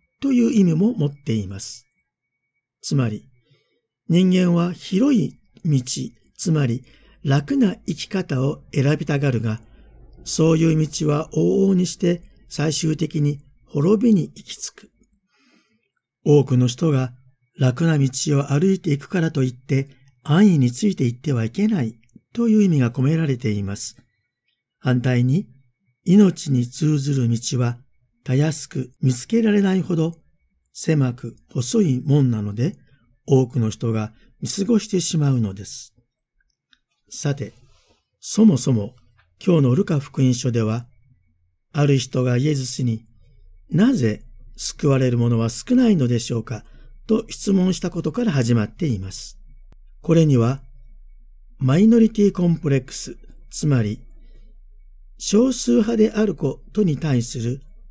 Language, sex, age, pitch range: Japanese, male, 50-69, 120-165 Hz